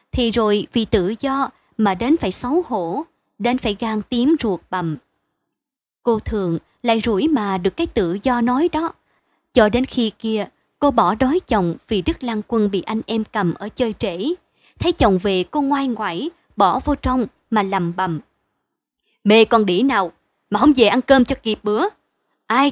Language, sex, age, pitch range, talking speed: Vietnamese, male, 20-39, 200-270 Hz, 190 wpm